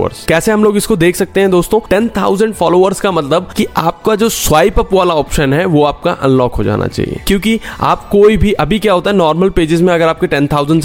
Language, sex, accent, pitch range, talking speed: Hindi, male, native, 135-190 Hz, 225 wpm